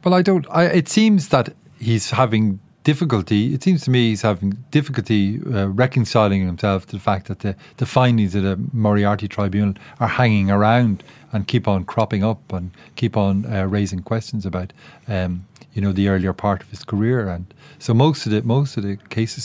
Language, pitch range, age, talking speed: English, 100-120 Hz, 40-59, 195 wpm